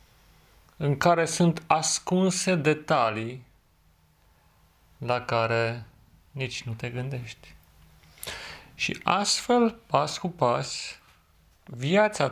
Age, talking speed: 40-59, 85 wpm